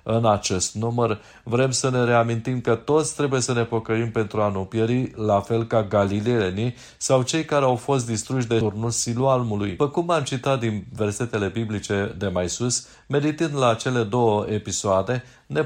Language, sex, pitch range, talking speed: Romanian, male, 105-130 Hz, 170 wpm